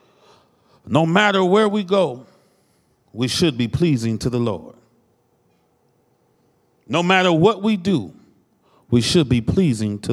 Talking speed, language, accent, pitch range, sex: 130 wpm, English, American, 190-295 Hz, male